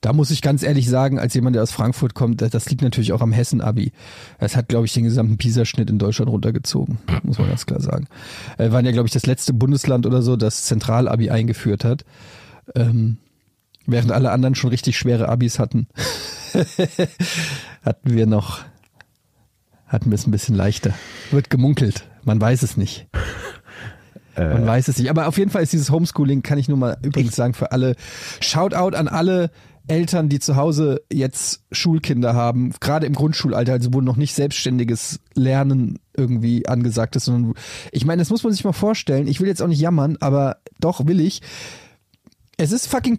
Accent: German